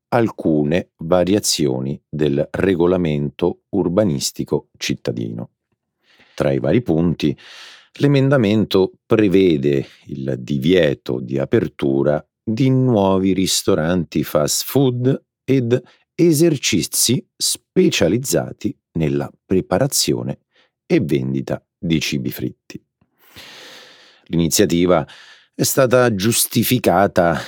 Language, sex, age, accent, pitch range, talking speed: Italian, male, 50-69, native, 70-100 Hz, 75 wpm